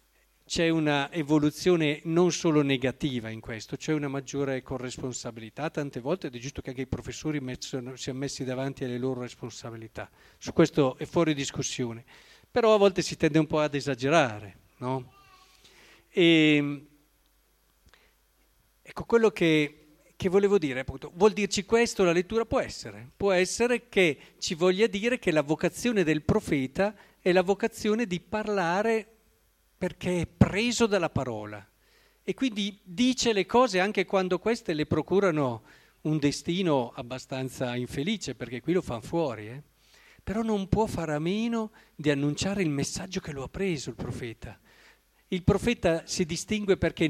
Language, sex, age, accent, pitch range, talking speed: Italian, male, 50-69, native, 130-190 Hz, 155 wpm